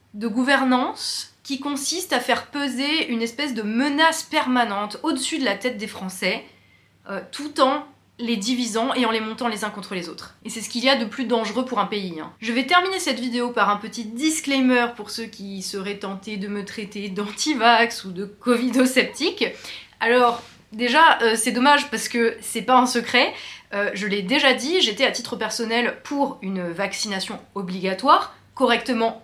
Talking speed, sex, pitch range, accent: 185 wpm, female, 205-255 Hz, French